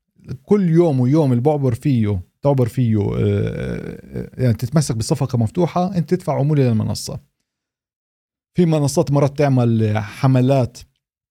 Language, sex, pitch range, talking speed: Arabic, male, 115-150 Hz, 110 wpm